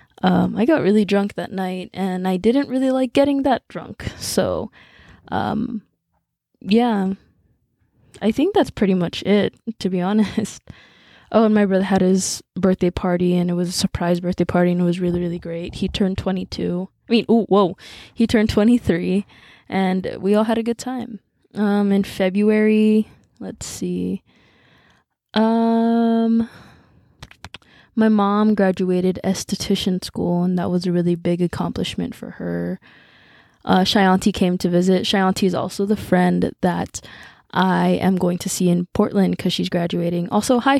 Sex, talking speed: female, 160 wpm